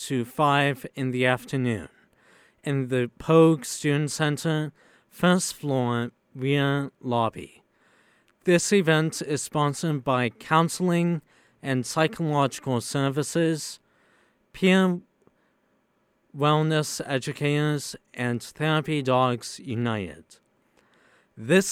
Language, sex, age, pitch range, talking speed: English, male, 50-69, 130-165 Hz, 85 wpm